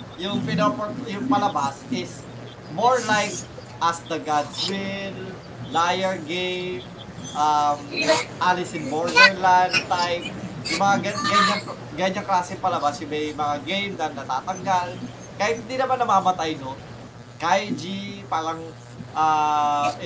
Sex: male